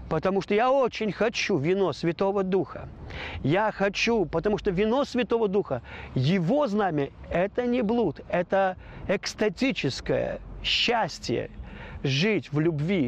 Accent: native